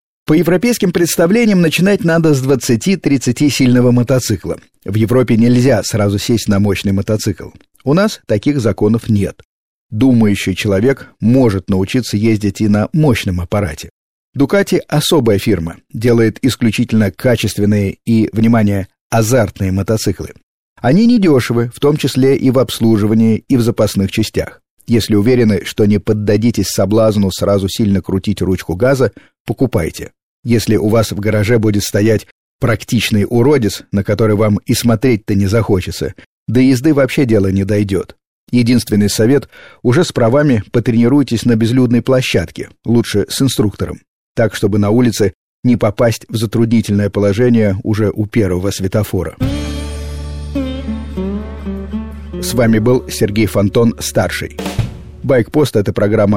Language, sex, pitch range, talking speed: Russian, male, 100-125 Hz, 130 wpm